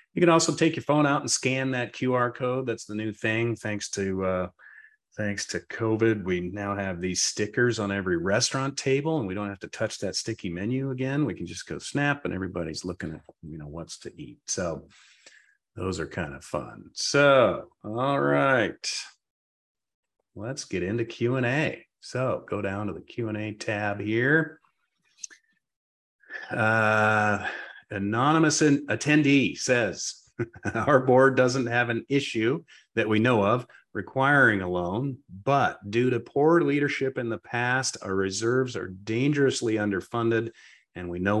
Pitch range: 100-130 Hz